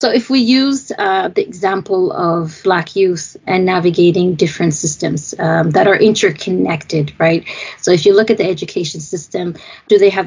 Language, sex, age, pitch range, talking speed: English, female, 30-49, 185-210 Hz, 175 wpm